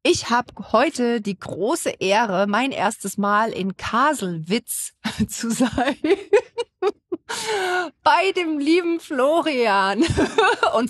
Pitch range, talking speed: 210-270 Hz, 100 wpm